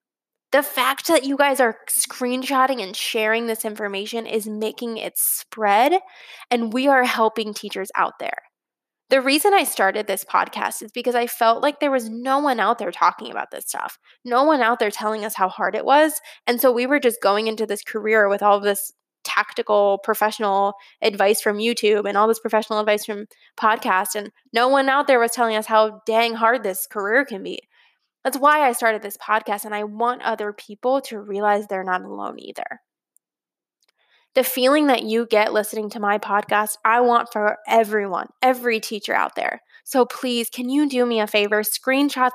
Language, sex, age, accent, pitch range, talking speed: English, female, 10-29, American, 215-255 Hz, 195 wpm